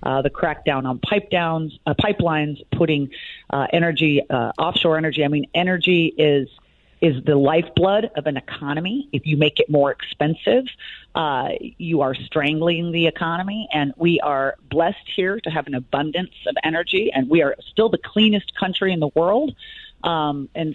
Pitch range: 150-190 Hz